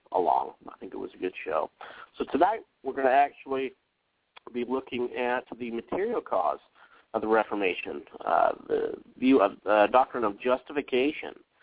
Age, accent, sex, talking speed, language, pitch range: 30-49, American, male, 160 wpm, English, 110-140 Hz